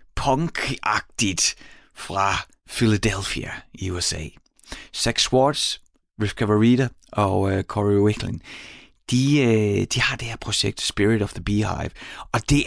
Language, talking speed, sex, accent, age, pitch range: Danish, 120 wpm, male, native, 30-49, 100-135 Hz